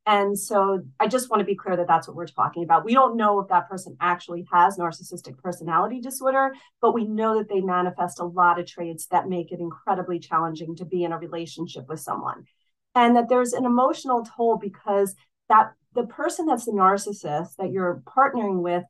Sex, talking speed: female, 205 wpm